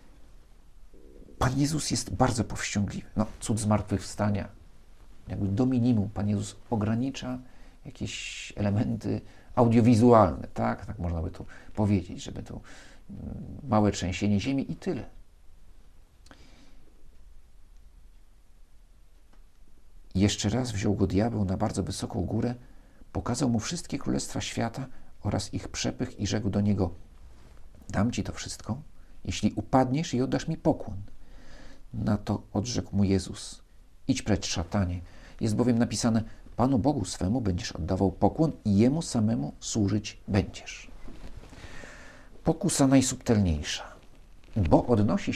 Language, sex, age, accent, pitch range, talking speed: Polish, male, 50-69, native, 90-120 Hz, 115 wpm